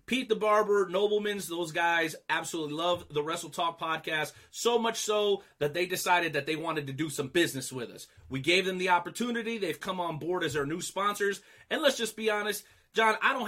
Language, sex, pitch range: English, male, 145-200 Hz